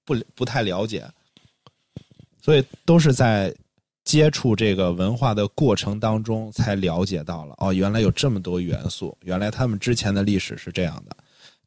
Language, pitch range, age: Chinese, 95-125 Hz, 20-39